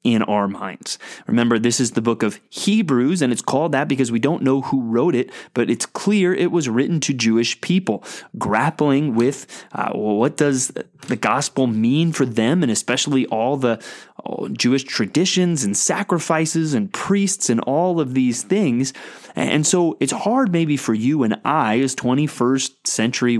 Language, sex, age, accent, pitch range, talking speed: English, male, 30-49, American, 120-165 Hz, 175 wpm